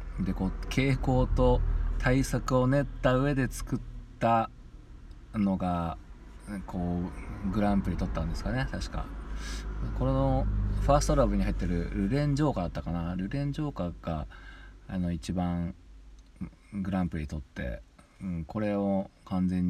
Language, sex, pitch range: Japanese, male, 80-105 Hz